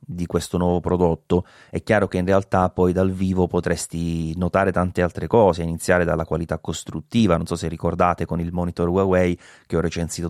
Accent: native